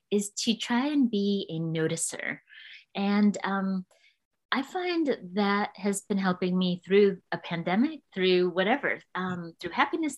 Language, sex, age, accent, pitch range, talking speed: English, female, 30-49, American, 185-230 Hz, 140 wpm